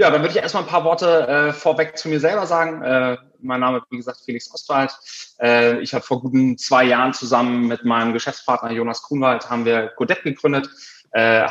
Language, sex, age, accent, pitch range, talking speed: German, male, 20-39, German, 110-145 Hz, 205 wpm